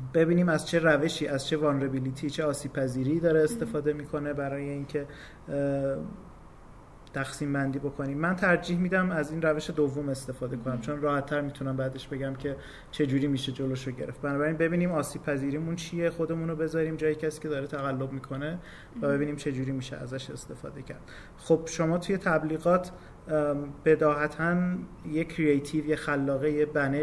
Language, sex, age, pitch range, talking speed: Persian, male, 30-49, 140-160 Hz, 155 wpm